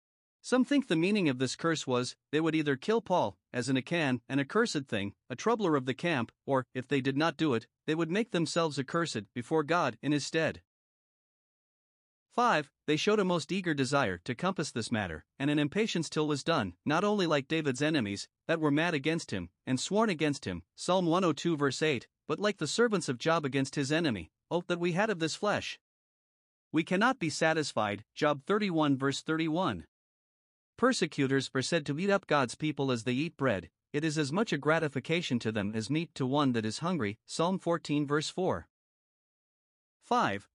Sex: male